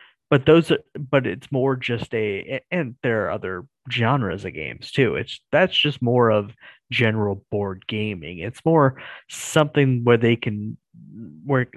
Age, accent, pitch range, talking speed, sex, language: 30-49, American, 110-135 Hz, 155 wpm, male, English